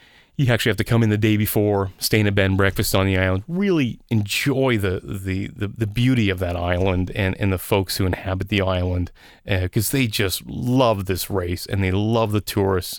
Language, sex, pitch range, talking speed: English, male, 95-115 Hz, 220 wpm